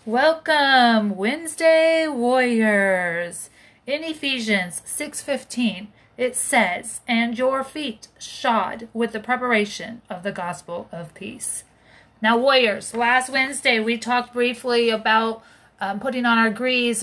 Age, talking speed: 30-49, 115 wpm